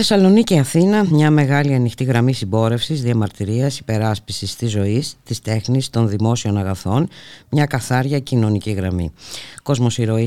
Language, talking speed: Greek, 125 wpm